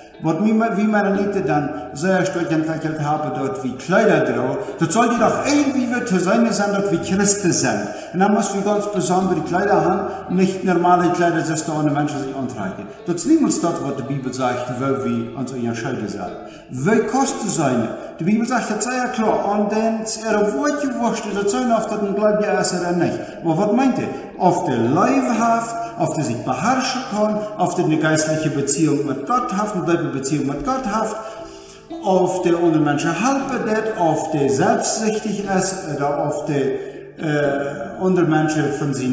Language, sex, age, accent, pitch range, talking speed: Spanish, male, 50-69, German, 155-220 Hz, 195 wpm